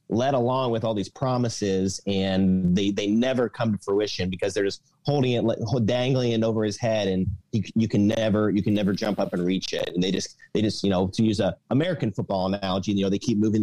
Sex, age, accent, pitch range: male, 30-49, American, 100-125 Hz